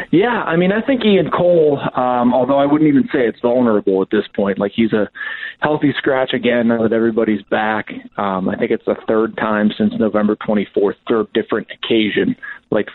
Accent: American